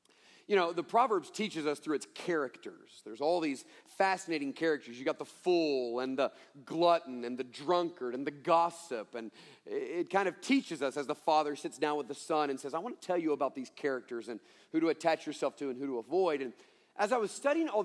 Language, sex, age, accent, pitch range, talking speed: English, male, 40-59, American, 170-270 Hz, 225 wpm